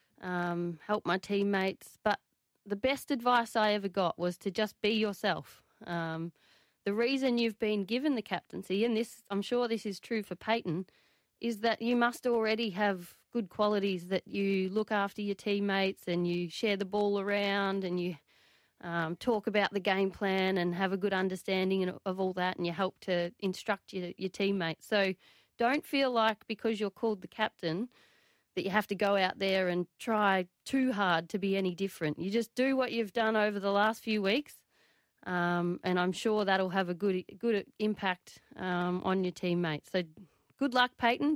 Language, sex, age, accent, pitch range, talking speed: English, female, 30-49, Australian, 185-225 Hz, 190 wpm